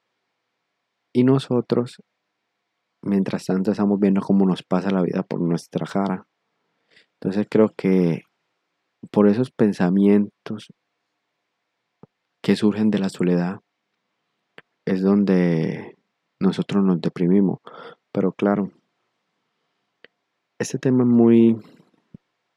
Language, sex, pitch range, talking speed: Spanish, male, 95-105 Hz, 95 wpm